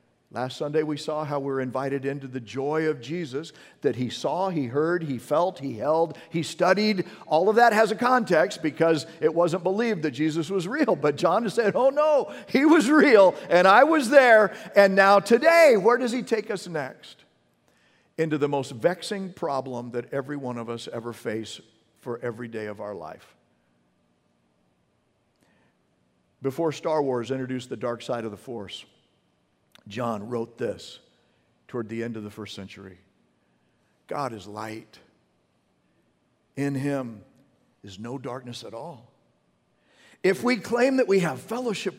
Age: 50-69